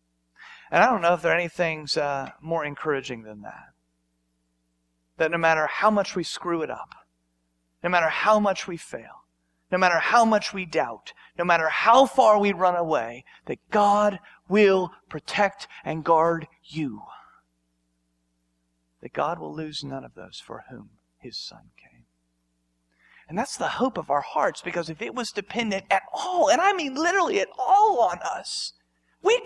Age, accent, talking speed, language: 40-59, American, 170 wpm, English